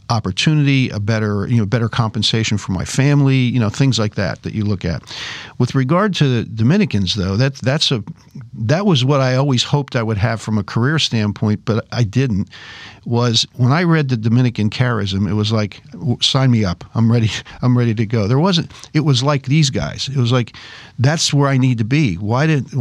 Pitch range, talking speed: 115-140 Hz, 215 wpm